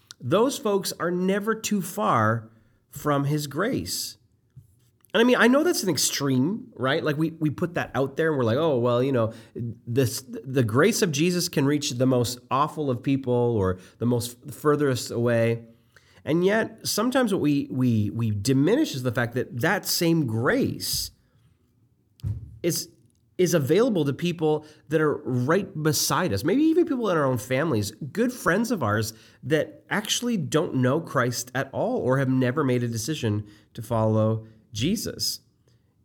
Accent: American